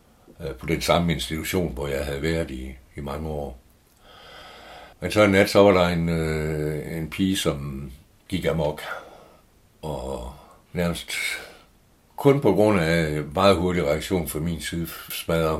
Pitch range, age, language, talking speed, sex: 75-90 Hz, 60-79, Danish, 150 wpm, male